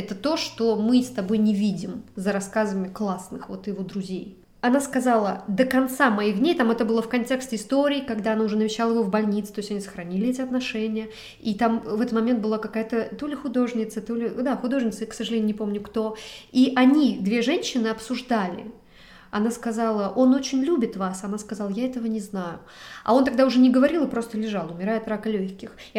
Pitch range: 205-250 Hz